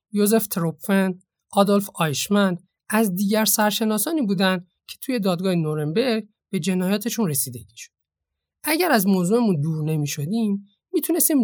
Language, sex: Persian, male